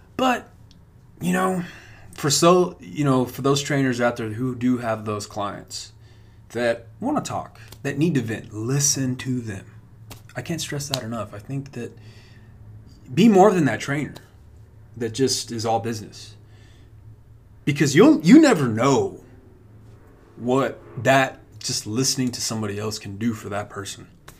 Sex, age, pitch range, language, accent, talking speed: male, 20-39, 110-150 Hz, English, American, 155 wpm